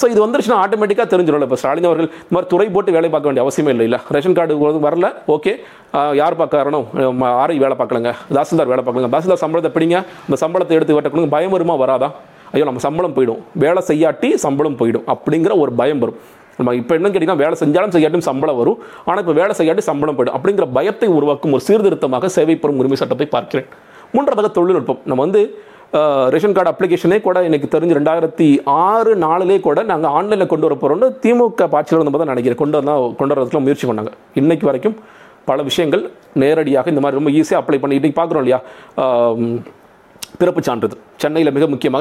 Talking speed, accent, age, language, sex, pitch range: 170 wpm, native, 40-59, Tamil, male, 145-185 Hz